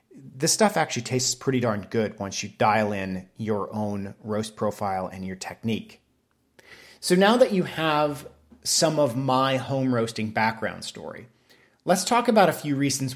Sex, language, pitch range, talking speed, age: male, English, 110-150 Hz, 165 wpm, 30-49